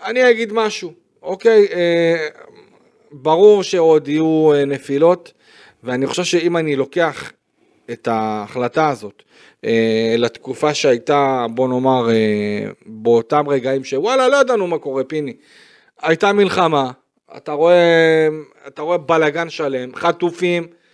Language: Hebrew